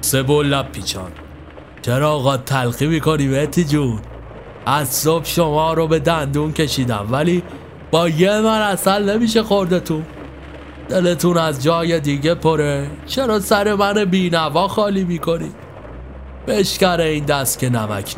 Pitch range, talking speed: 110-165 Hz, 130 wpm